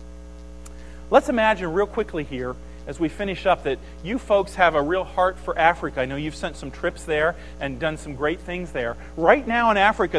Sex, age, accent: male, 40-59, American